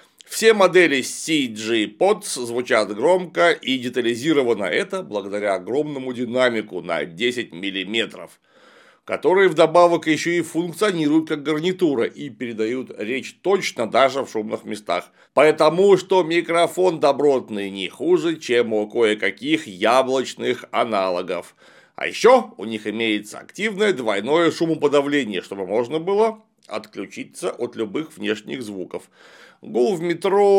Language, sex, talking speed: Russian, male, 120 wpm